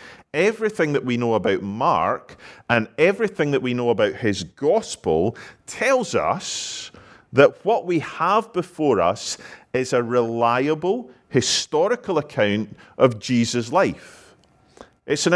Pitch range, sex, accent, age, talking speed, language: 120-160 Hz, male, British, 40-59, 125 wpm, English